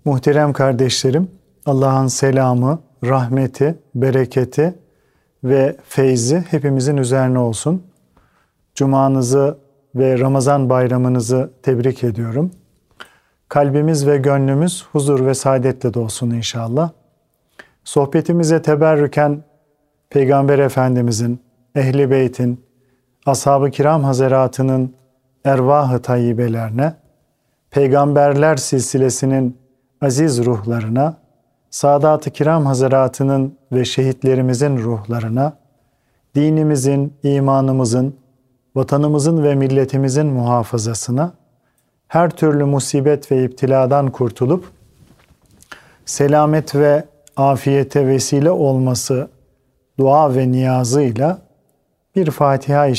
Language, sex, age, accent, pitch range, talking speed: Turkish, male, 40-59, native, 130-145 Hz, 75 wpm